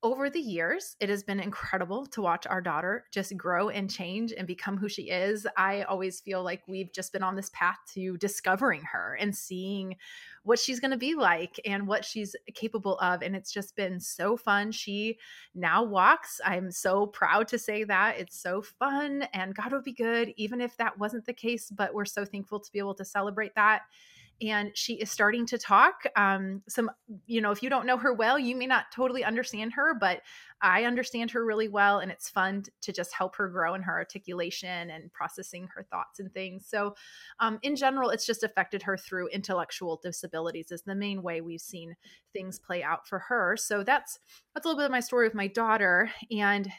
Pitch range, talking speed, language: 185-230 Hz, 210 wpm, English